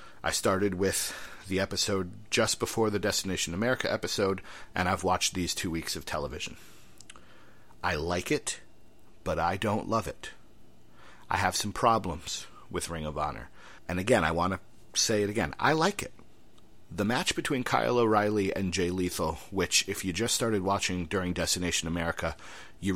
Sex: male